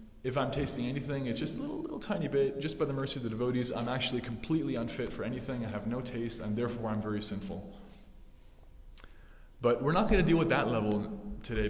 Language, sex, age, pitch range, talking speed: English, male, 20-39, 105-125 Hz, 220 wpm